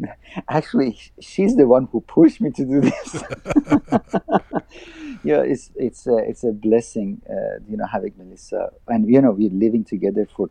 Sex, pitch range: male, 85-110 Hz